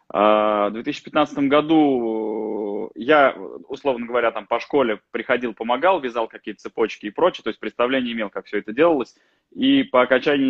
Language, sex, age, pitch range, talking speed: Russian, male, 20-39, 105-130 Hz, 150 wpm